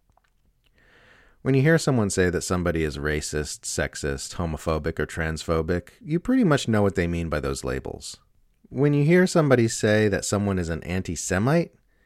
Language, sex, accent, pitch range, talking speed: English, male, American, 80-110 Hz, 165 wpm